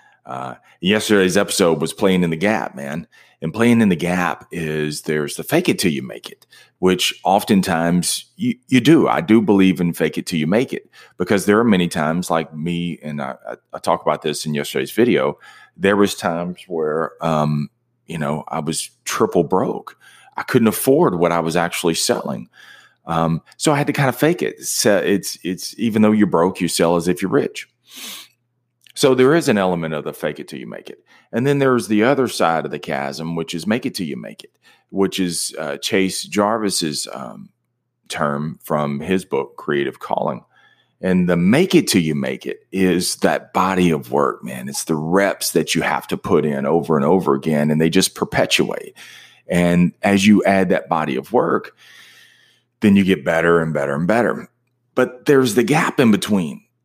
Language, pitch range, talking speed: English, 80-110 Hz, 200 wpm